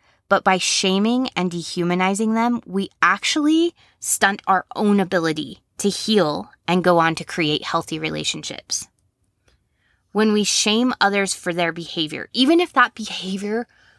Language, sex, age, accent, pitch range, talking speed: English, female, 20-39, American, 170-205 Hz, 135 wpm